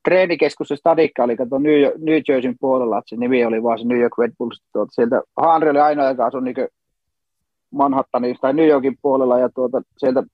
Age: 30-49